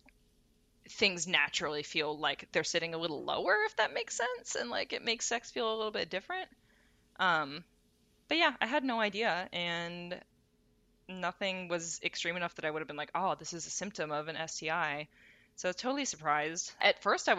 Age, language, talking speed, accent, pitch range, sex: 20-39, English, 195 wpm, American, 155-210 Hz, female